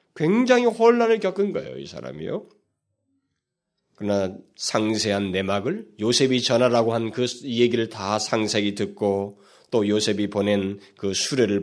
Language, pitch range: Korean, 100-145 Hz